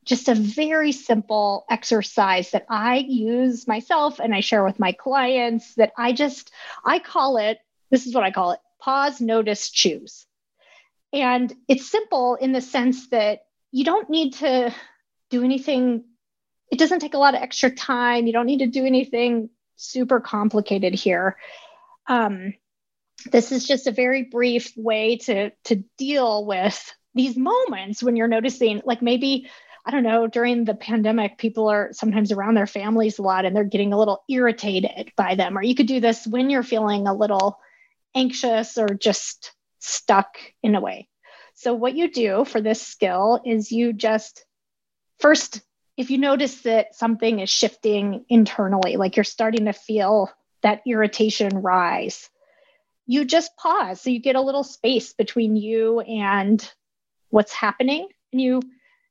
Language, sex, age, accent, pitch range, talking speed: English, female, 30-49, American, 215-260 Hz, 165 wpm